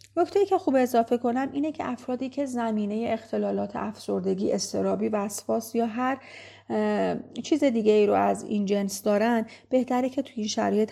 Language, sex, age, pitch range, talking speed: Persian, female, 40-59, 205-255 Hz, 165 wpm